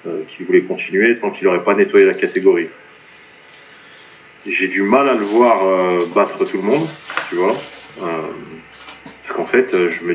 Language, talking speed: French, 175 wpm